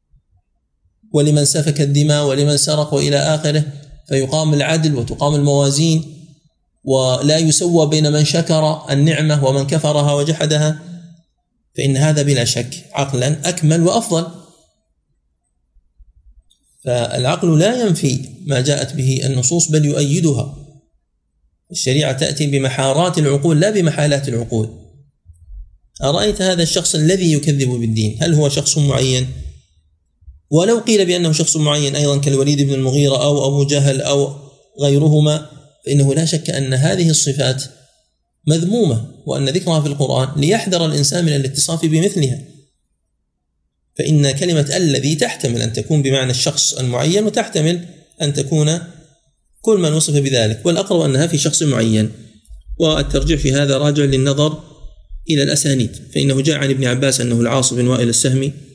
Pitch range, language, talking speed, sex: 130-155 Hz, Arabic, 125 wpm, male